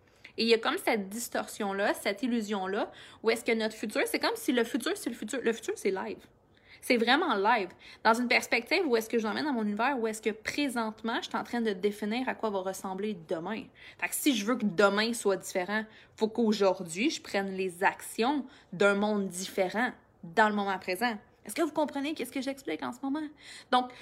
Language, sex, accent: English, female, Canadian